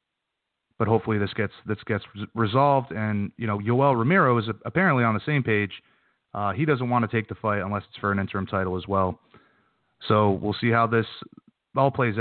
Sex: male